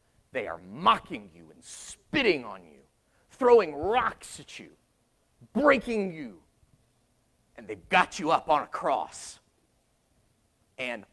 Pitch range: 165-225 Hz